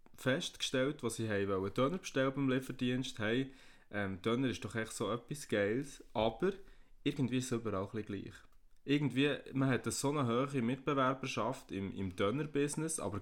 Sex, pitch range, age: male, 105-130 Hz, 20-39